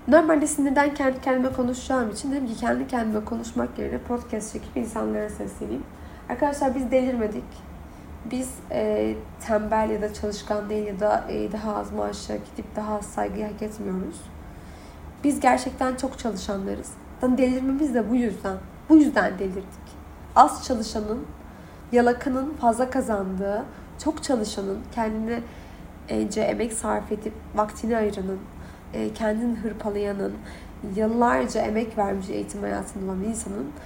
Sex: female